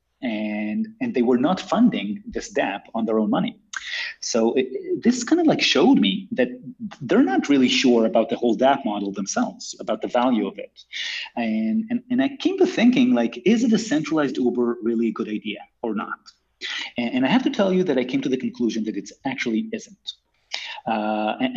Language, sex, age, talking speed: English, male, 30-49, 205 wpm